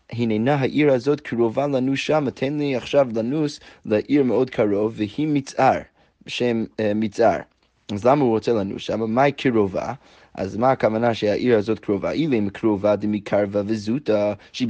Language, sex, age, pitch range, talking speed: Hebrew, male, 20-39, 105-130 Hz, 160 wpm